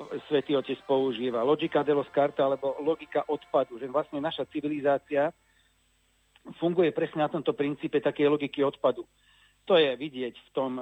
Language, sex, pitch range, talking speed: Slovak, male, 140-155 Hz, 145 wpm